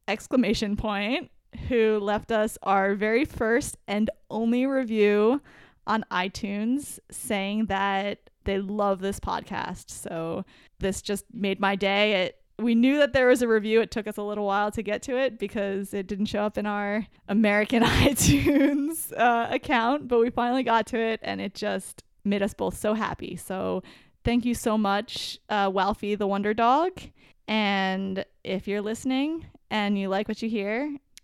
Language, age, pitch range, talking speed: English, 10-29, 205-245 Hz, 170 wpm